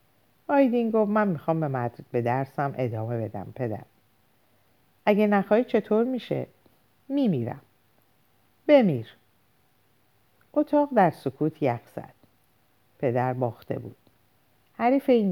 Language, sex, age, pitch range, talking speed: Persian, female, 50-69, 120-185 Hz, 105 wpm